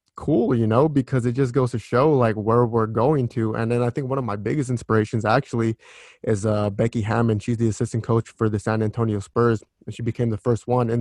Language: English